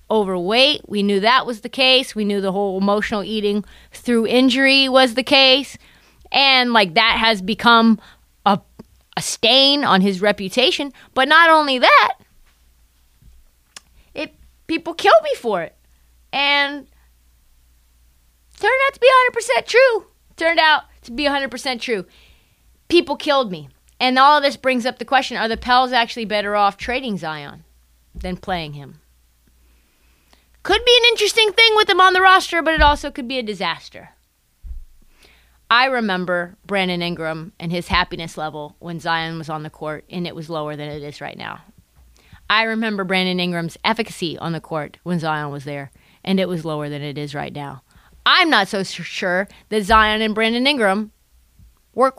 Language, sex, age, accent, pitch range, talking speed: English, female, 30-49, American, 160-265 Hz, 170 wpm